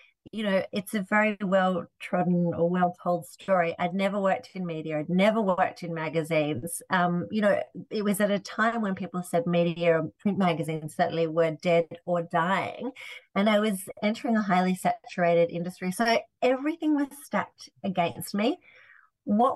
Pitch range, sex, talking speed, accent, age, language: 170-215 Hz, female, 170 wpm, Australian, 30-49, English